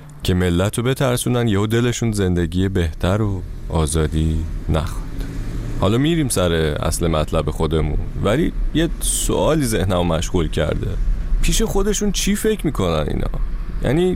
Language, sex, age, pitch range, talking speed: Persian, male, 30-49, 90-140 Hz, 125 wpm